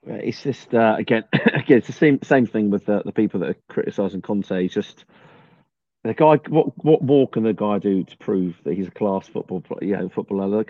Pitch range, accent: 105-125 Hz, British